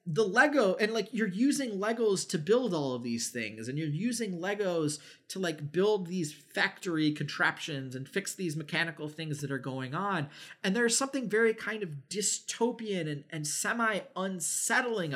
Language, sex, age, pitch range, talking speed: English, male, 30-49, 140-190 Hz, 170 wpm